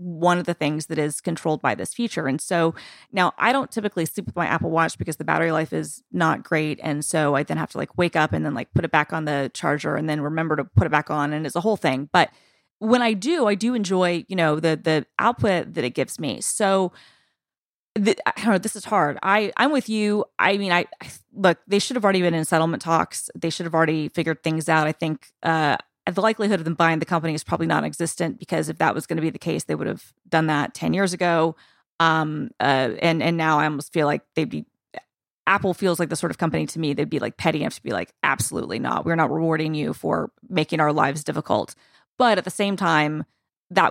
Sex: female